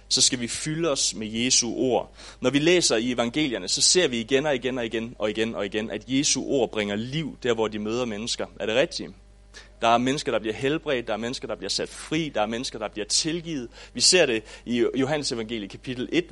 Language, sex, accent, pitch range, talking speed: English, male, Danish, 100-140 Hz, 235 wpm